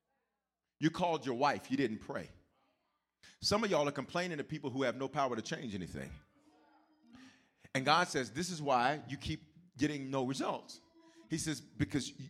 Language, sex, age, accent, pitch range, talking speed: English, male, 40-59, American, 130-180 Hz, 170 wpm